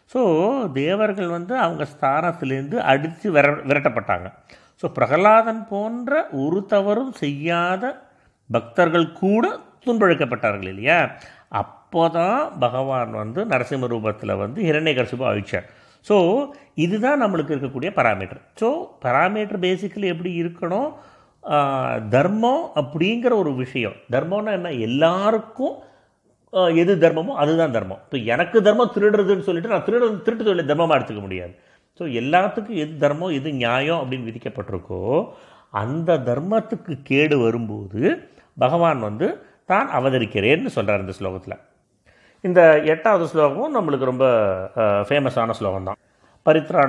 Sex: male